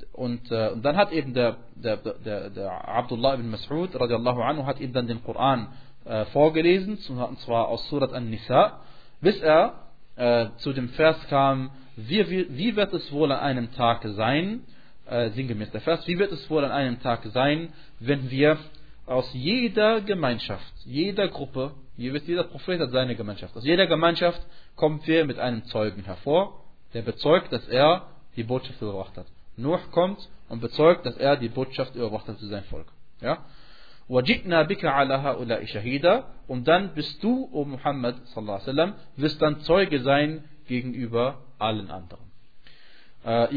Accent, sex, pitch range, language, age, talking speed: German, male, 120-150 Hz, German, 30-49, 160 wpm